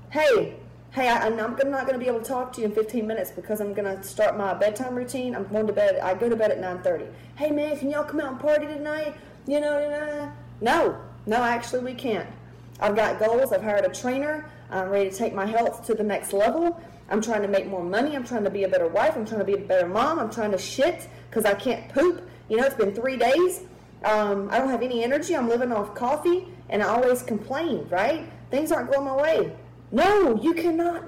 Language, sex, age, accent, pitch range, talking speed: English, female, 30-49, American, 215-290 Hz, 235 wpm